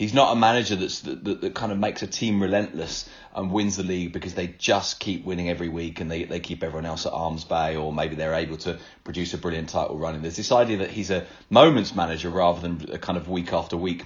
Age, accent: 30-49, British